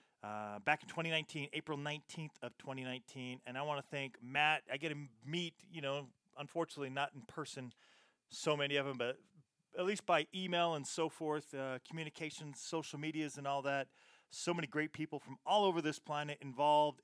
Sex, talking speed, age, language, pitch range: male, 185 wpm, 30-49, English, 140-165 Hz